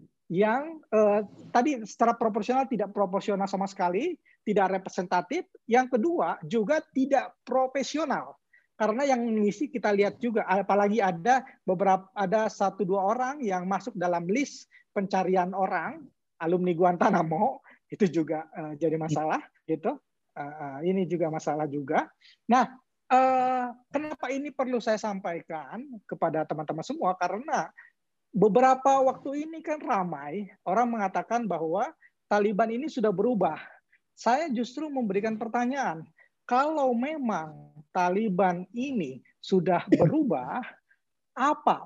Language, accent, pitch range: Indonesian, native, 185-255 Hz